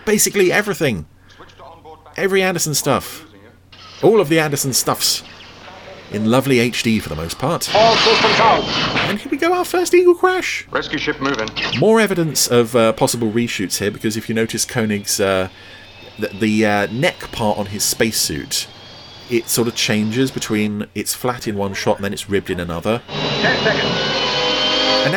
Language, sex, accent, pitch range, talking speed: English, male, British, 105-155 Hz, 155 wpm